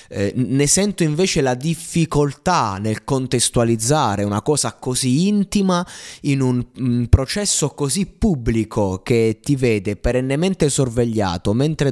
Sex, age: male, 20-39